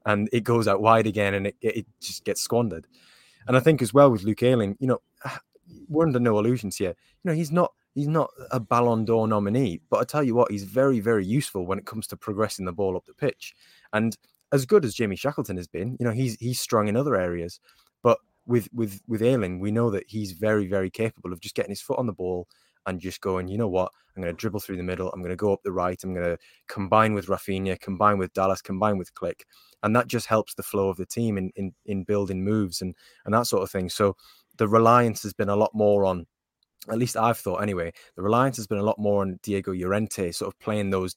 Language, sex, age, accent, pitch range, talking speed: English, male, 20-39, British, 95-115 Hz, 250 wpm